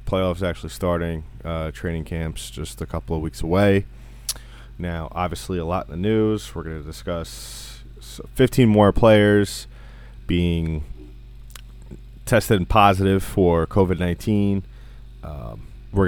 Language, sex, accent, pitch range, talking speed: English, male, American, 80-105 Hz, 130 wpm